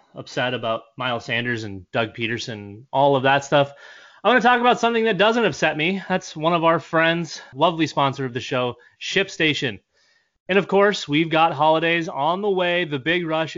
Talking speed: 195 wpm